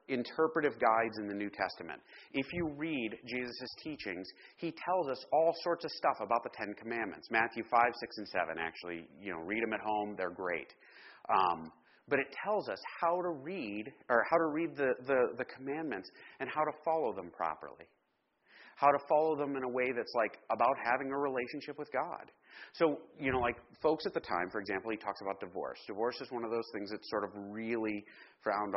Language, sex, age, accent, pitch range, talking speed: English, male, 30-49, American, 105-145 Hz, 205 wpm